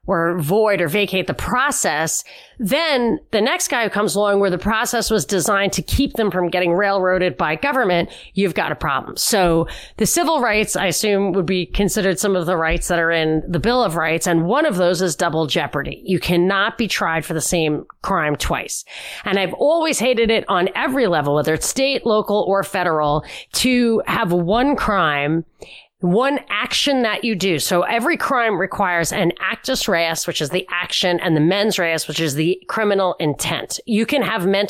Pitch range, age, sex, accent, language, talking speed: 175-225 Hz, 30-49, female, American, English, 195 wpm